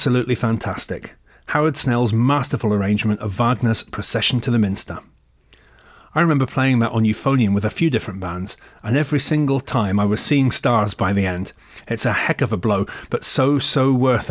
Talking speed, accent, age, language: 185 wpm, British, 30-49, English